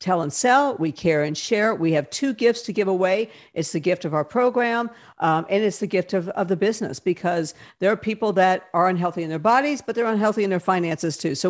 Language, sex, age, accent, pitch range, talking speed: English, female, 50-69, American, 165-215 Hz, 245 wpm